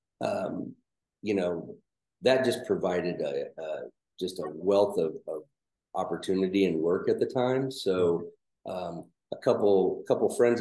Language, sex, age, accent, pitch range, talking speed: English, male, 40-59, American, 90-115 Hz, 140 wpm